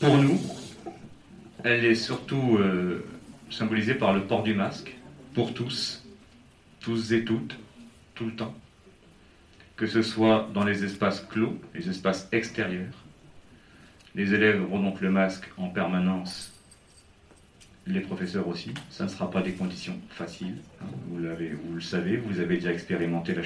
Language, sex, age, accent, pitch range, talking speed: French, male, 40-59, French, 95-115 Hz, 145 wpm